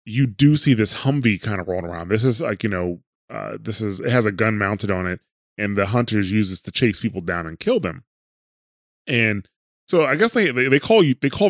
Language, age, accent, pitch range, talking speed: English, 20-39, American, 95-120 Hz, 240 wpm